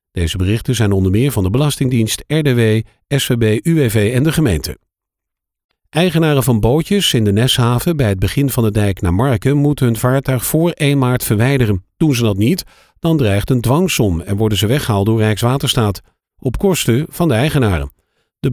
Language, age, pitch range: Dutch, 50-69, 105-135 Hz